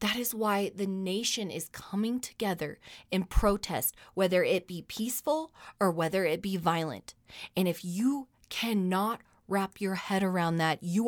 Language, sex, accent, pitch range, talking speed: English, female, American, 170-225 Hz, 155 wpm